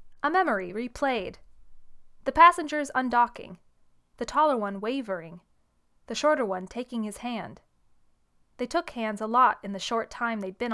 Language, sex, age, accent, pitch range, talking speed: English, female, 20-39, American, 205-265 Hz, 150 wpm